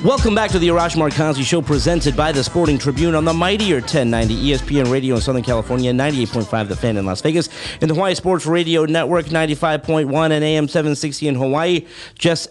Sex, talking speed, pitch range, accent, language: male, 190 wpm, 125-170 Hz, American, English